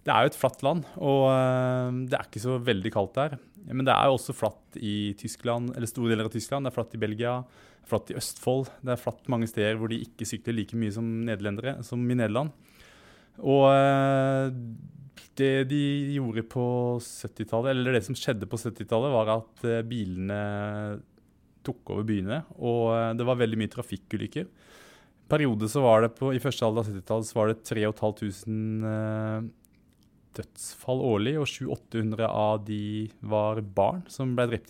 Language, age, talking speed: English, 20-39, 175 wpm